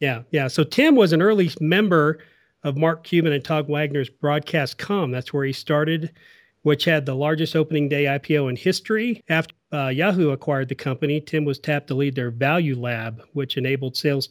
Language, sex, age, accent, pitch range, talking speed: English, male, 40-59, American, 130-155 Hz, 190 wpm